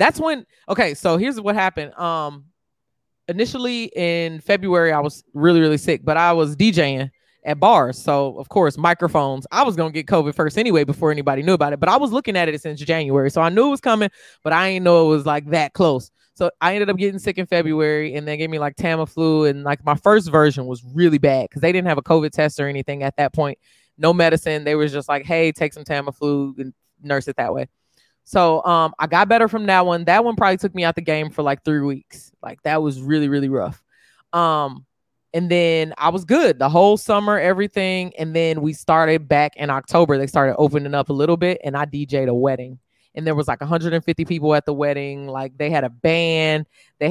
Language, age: English, 20-39